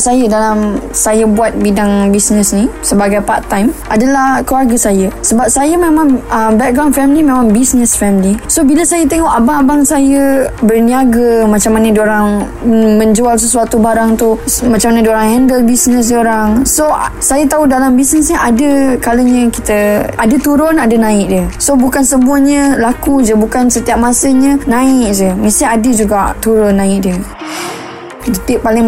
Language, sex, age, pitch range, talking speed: Malay, female, 20-39, 220-265 Hz, 150 wpm